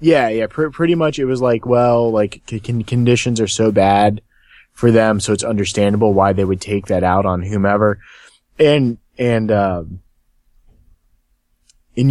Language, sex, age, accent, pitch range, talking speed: English, male, 20-39, American, 85-110 Hz, 160 wpm